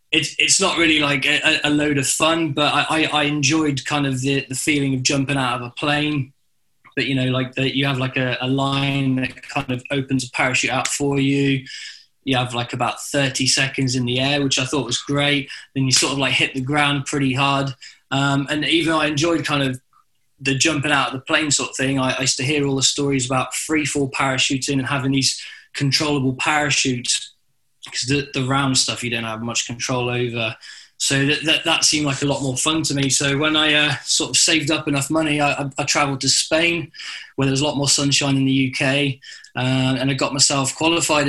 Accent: British